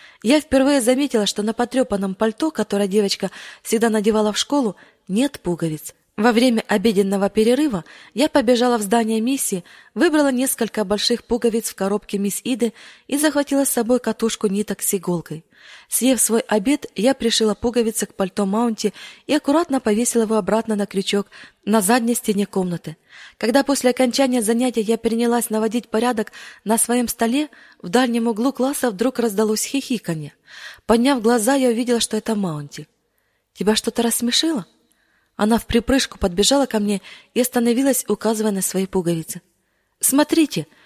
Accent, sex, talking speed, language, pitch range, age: native, female, 150 wpm, Russian, 205-260 Hz, 20-39